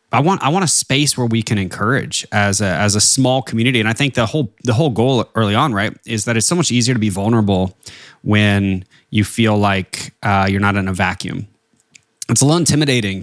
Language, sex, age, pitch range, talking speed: English, male, 20-39, 100-125 Hz, 225 wpm